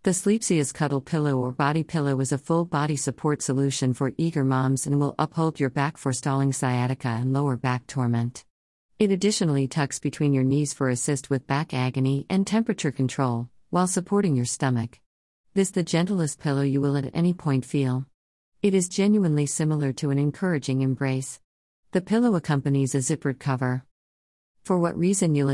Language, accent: English, American